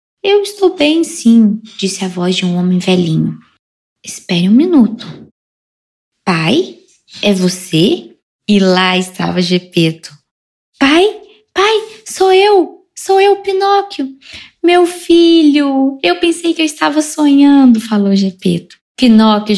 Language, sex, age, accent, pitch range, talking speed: Portuguese, female, 10-29, Brazilian, 185-265 Hz, 120 wpm